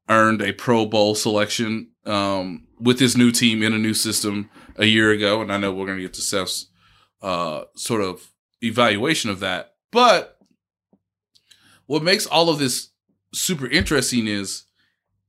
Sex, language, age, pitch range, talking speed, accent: male, English, 20-39, 100-125 Hz, 160 wpm, American